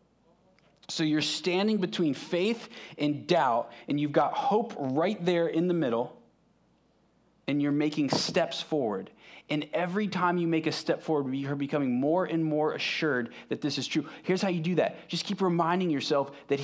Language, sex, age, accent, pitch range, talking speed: English, male, 20-39, American, 135-175 Hz, 175 wpm